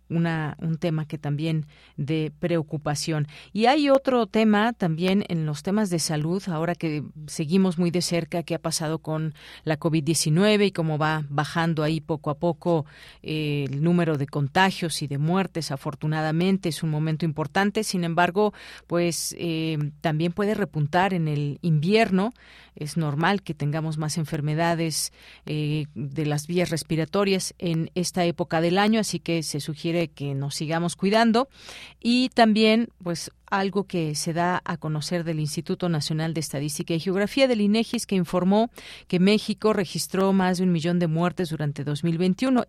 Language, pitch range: Spanish, 155-185 Hz